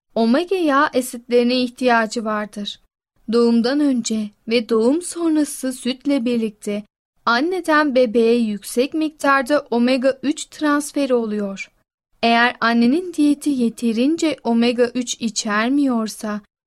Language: Turkish